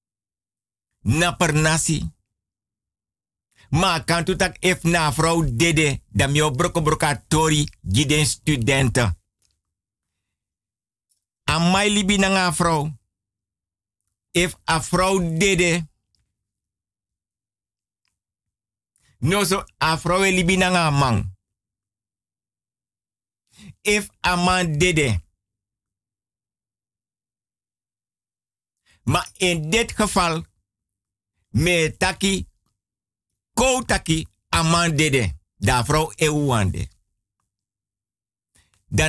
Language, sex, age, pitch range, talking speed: Dutch, male, 50-69, 105-165 Hz, 70 wpm